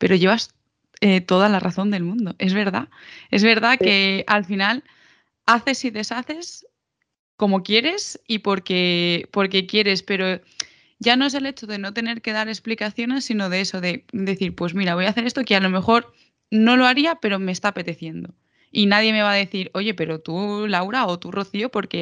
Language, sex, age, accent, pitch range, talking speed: Spanish, female, 20-39, Spanish, 190-225 Hz, 200 wpm